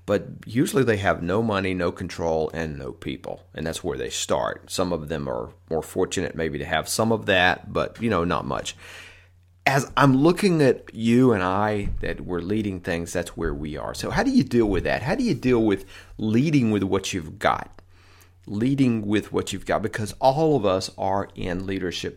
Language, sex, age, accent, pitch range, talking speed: English, male, 40-59, American, 90-110 Hz, 210 wpm